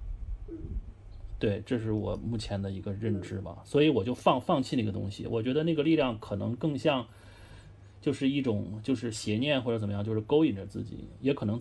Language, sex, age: Chinese, male, 30-49